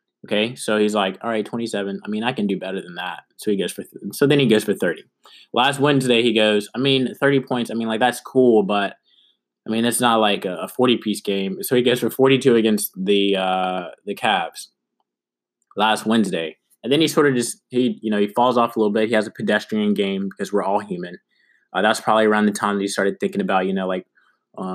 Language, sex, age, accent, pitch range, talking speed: English, male, 20-39, American, 100-120 Hz, 240 wpm